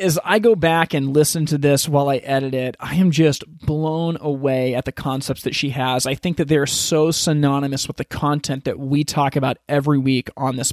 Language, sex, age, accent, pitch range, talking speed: English, male, 30-49, American, 135-165 Hz, 225 wpm